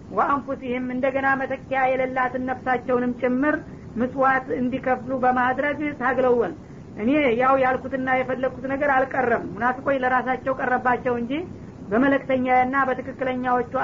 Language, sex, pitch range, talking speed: Amharic, female, 245-265 Hz, 105 wpm